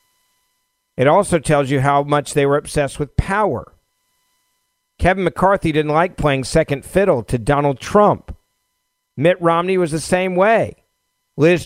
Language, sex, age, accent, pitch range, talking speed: English, male, 50-69, American, 145-200 Hz, 145 wpm